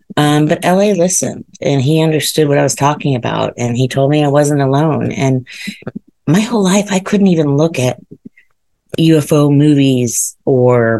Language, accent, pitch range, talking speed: English, American, 125-160 Hz, 170 wpm